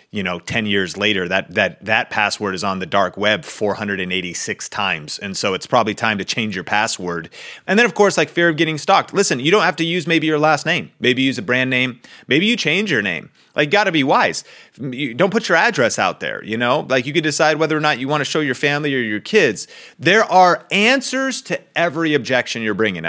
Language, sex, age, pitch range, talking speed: English, male, 30-49, 125-185 Hz, 235 wpm